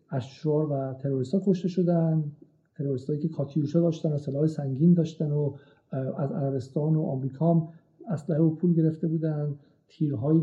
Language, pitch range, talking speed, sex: Persian, 140-170 Hz, 165 wpm, male